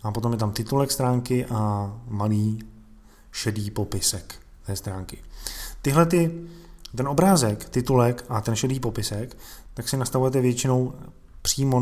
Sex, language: male, Czech